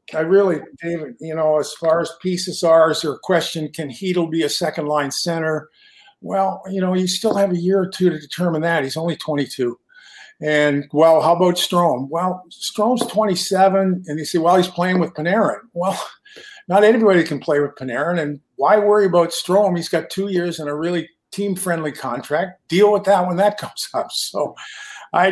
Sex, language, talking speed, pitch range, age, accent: male, English, 195 wpm, 145-185 Hz, 50-69, American